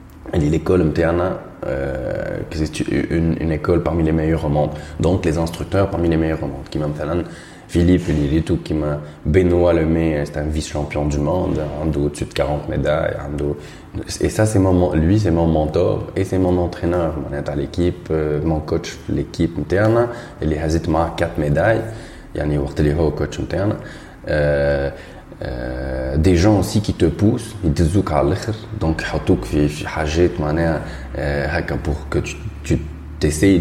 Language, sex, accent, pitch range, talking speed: French, male, French, 75-85 Hz, 160 wpm